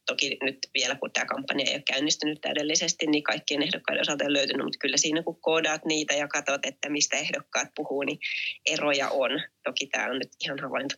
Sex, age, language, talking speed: female, 20-39, Finnish, 210 wpm